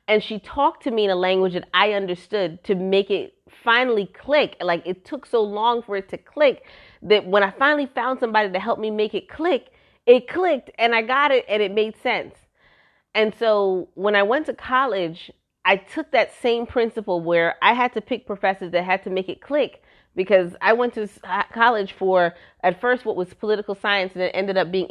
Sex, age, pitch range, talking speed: female, 30-49, 190-260 Hz, 210 wpm